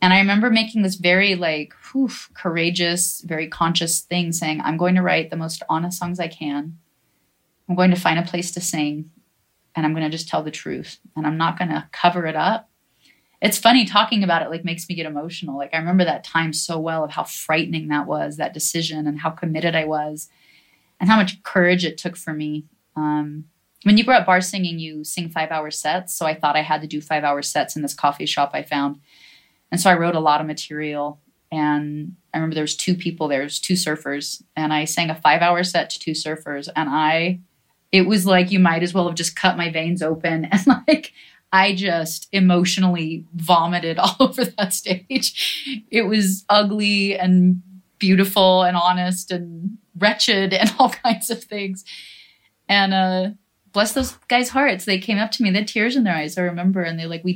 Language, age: English, 20-39